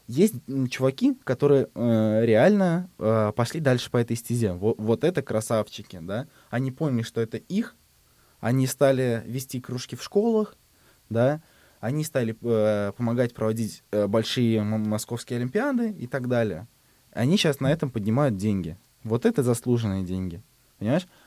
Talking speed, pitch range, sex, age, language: 145 wpm, 115-150 Hz, male, 20-39, Russian